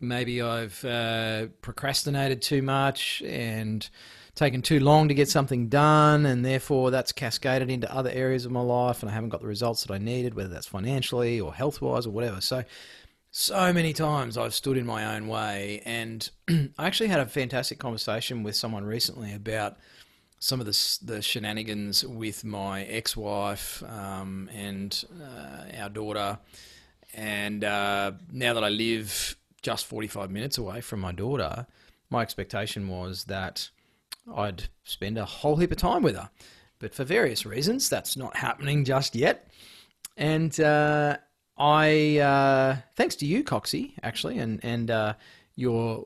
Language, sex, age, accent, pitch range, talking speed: English, male, 30-49, Australian, 105-140 Hz, 160 wpm